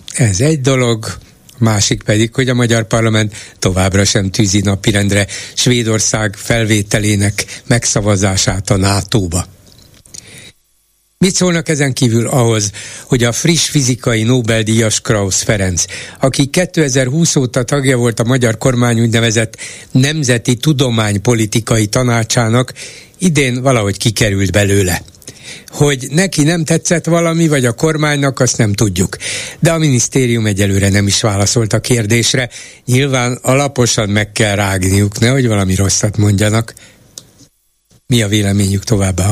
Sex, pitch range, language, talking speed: male, 105-130 Hz, Hungarian, 120 wpm